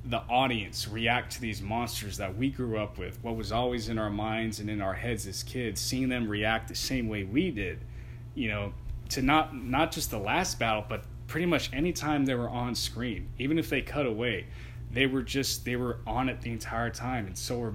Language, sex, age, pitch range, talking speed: English, male, 20-39, 110-130 Hz, 225 wpm